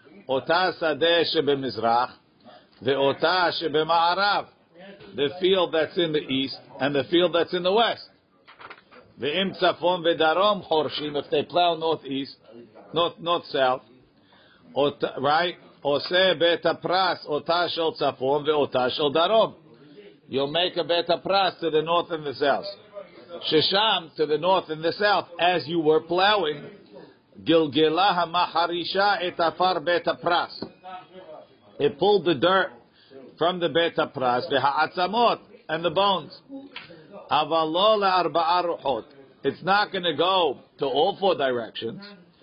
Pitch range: 155-185 Hz